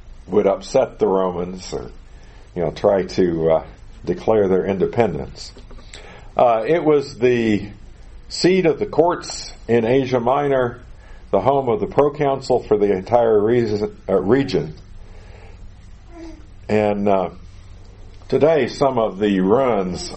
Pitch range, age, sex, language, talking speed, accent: 90-125 Hz, 50-69, male, English, 125 wpm, American